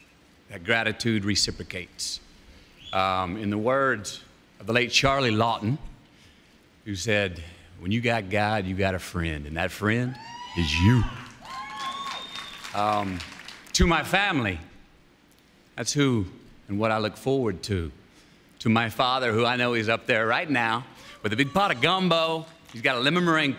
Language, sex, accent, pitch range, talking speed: English, male, American, 100-135 Hz, 155 wpm